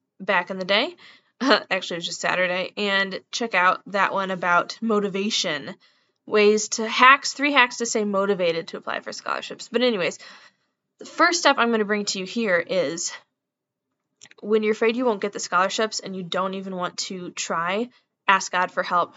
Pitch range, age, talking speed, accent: 190-230 Hz, 10-29, 190 wpm, American